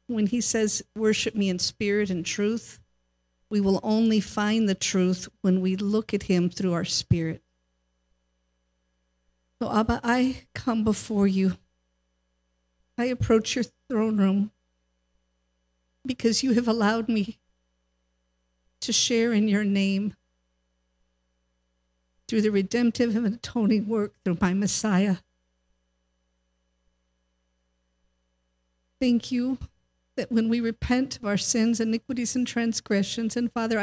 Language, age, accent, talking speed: English, 50-69, American, 120 wpm